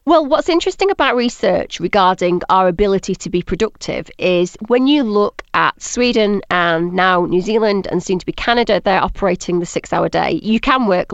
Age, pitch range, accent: 30-49, 180-235 Hz, British